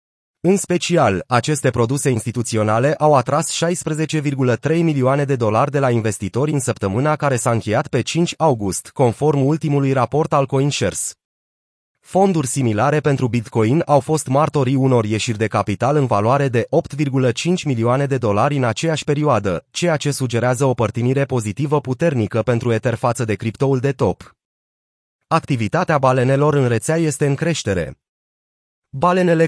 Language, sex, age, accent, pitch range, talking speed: Romanian, male, 30-49, native, 115-155 Hz, 145 wpm